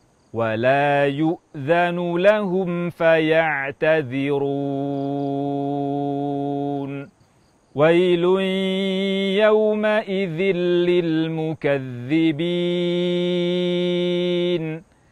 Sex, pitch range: male, 145-175 Hz